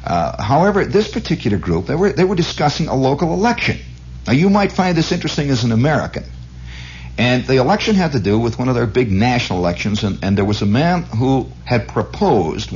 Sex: male